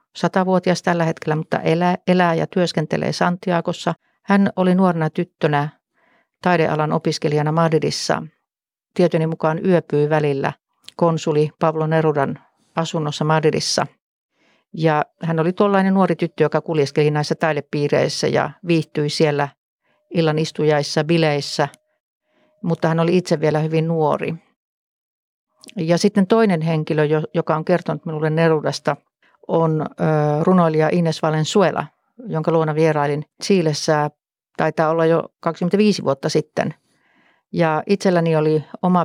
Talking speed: 115 wpm